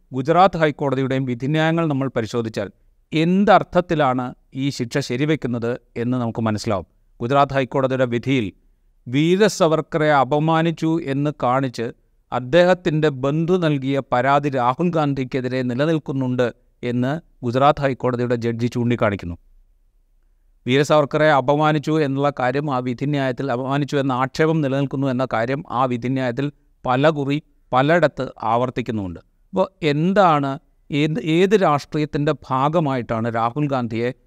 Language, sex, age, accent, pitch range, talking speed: Malayalam, male, 30-49, native, 120-155 Hz, 100 wpm